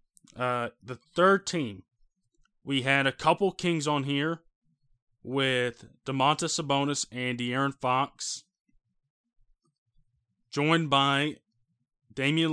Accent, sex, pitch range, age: American, male, 120-150 Hz, 20-39